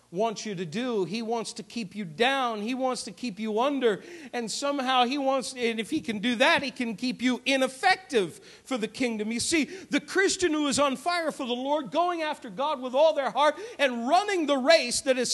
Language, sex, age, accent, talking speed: English, male, 50-69, American, 225 wpm